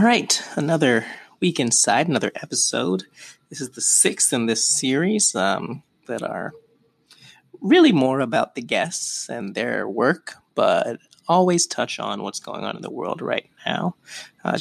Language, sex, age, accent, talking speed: English, male, 20-39, American, 155 wpm